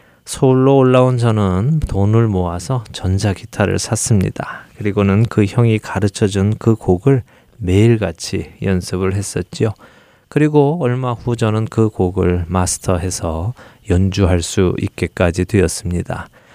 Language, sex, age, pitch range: Korean, male, 20-39, 95-120 Hz